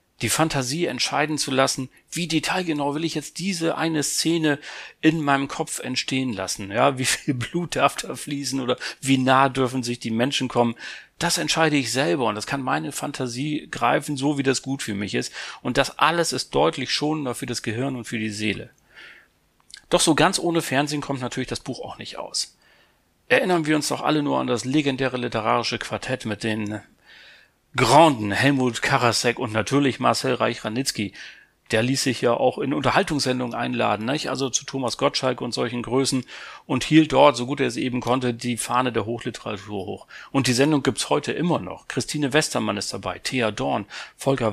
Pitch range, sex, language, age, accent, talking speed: 120-150 Hz, male, German, 40-59, German, 185 wpm